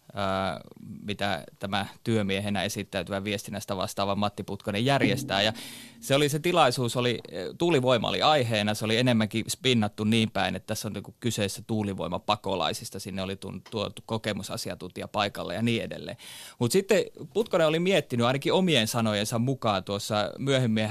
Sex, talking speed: male, 145 wpm